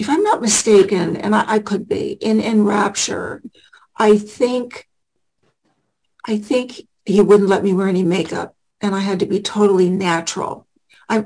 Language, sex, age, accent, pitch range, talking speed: English, female, 60-79, American, 195-220 Hz, 160 wpm